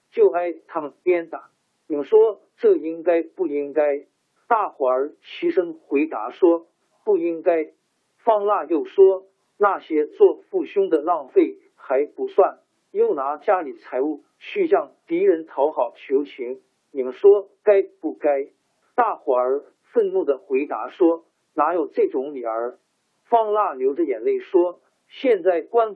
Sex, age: male, 50-69